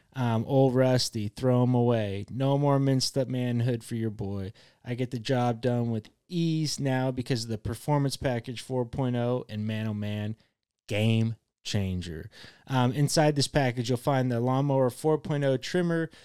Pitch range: 115-145 Hz